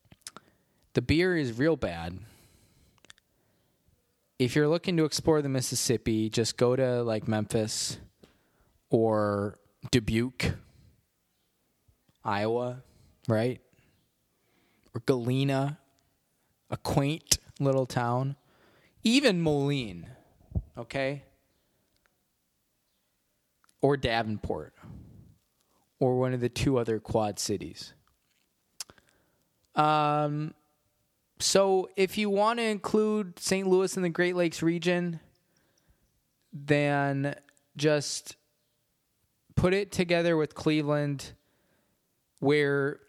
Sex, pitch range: male, 110-150 Hz